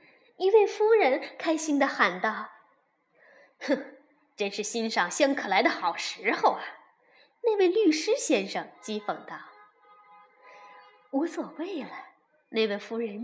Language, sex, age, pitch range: Chinese, female, 20-39, 235-345 Hz